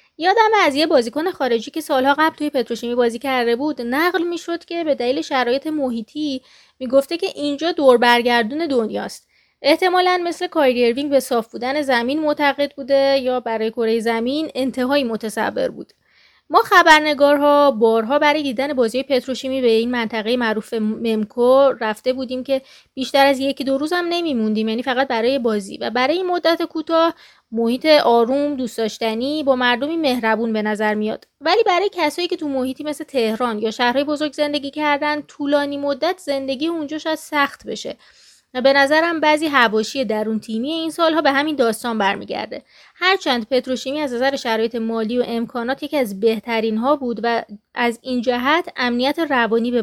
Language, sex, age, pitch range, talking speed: Persian, female, 20-39, 235-300 Hz, 165 wpm